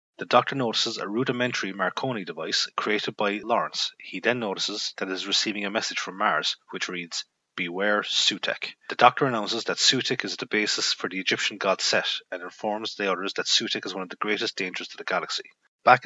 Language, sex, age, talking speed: English, male, 30-49, 200 wpm